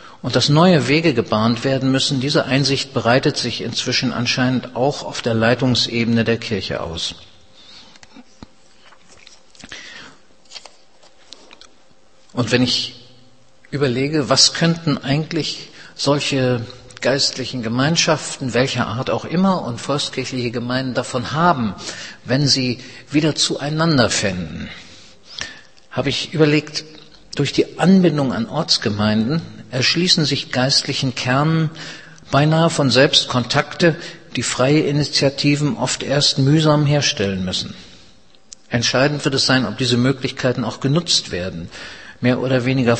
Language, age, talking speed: German, 50-69, 115 wpm